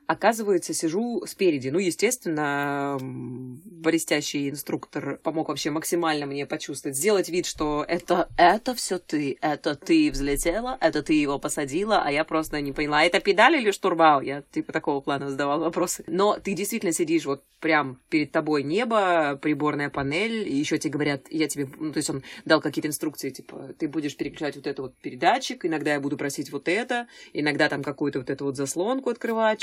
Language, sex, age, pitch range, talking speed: Russian, female, 20-39, 145-180 Hz, 175 wpm